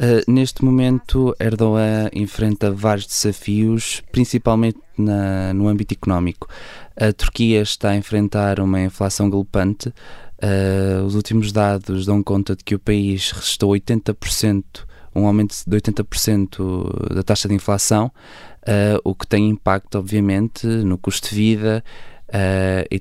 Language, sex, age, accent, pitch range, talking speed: Portuguese, male, 20-39, Portuguese, 100-115 Hz, 135 wpm